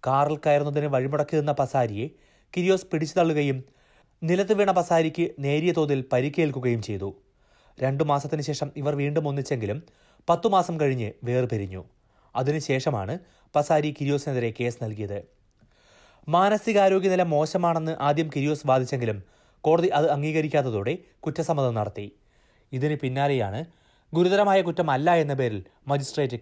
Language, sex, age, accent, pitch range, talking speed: Malayalam, male, 30-49, native, 120-155 Hz, 105 wpm